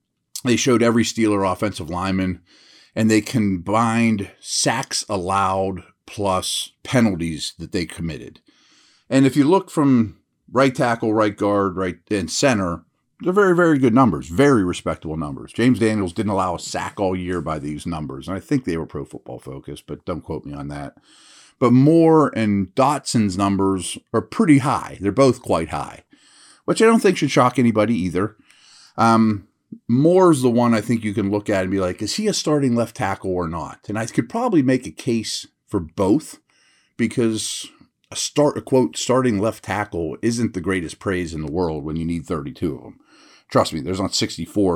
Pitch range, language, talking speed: 90-125 Hz, English, 185 wpm